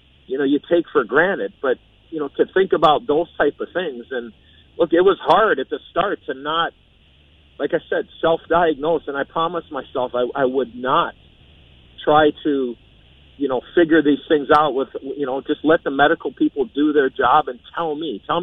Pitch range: 135-195 Hz